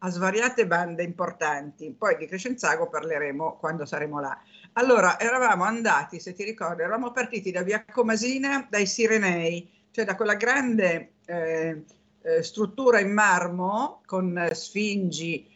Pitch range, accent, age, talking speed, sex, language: 175-225 Hz, native, 50-69, 130 wpm, female, Italian